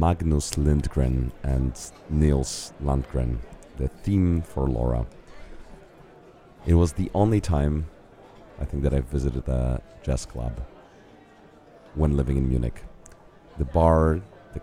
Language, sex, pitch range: English, male, 65-80 Hz